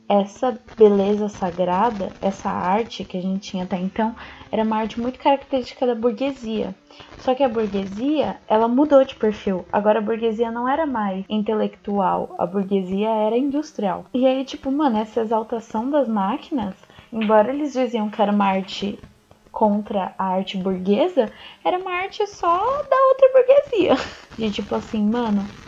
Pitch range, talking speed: 215-265 Hz, 155 wpm